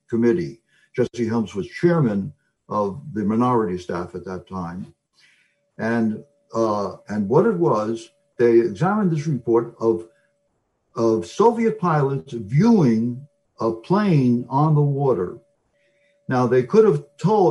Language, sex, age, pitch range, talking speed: English, male, 60-79, 110-145 Hz, 125 wpm